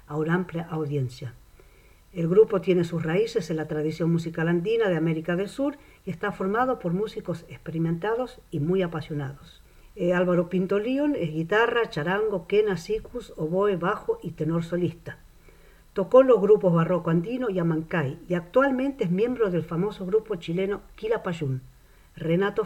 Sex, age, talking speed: female, 50-69, 155 wpm